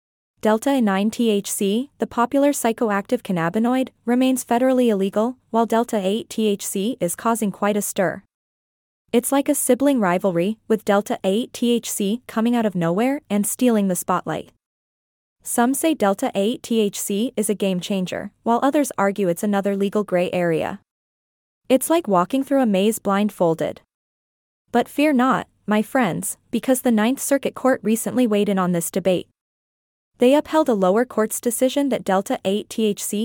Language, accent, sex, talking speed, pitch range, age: English, American, female, 145 wpm, 195-250 Hz, 20-39